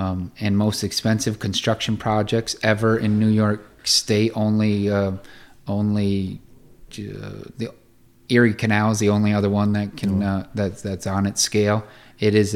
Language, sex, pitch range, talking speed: English, male, 100-115 Hz, 160 wpm